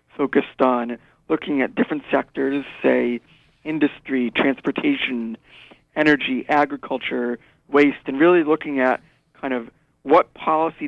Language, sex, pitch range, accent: English, male, 130-150 Hz, American